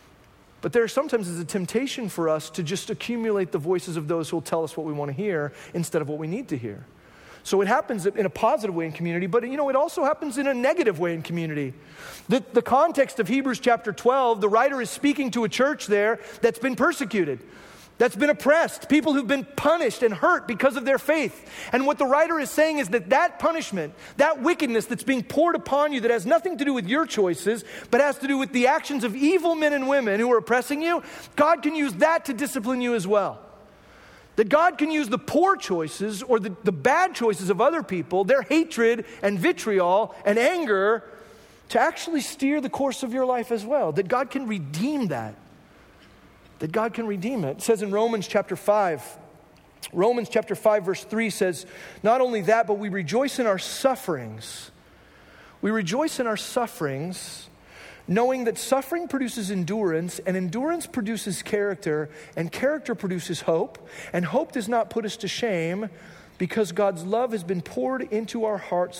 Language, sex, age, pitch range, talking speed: English, male, 40-59, 185-270 Hz, 200 wpm